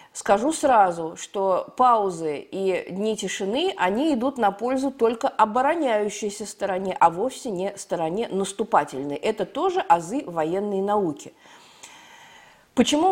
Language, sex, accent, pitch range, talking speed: Russian, female, native, 195-245 Hz, 115 wpm